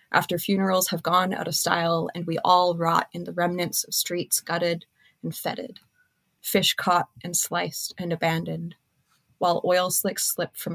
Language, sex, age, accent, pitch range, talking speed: English, female, 20-39, American, 165-185 Hz, 165 wpm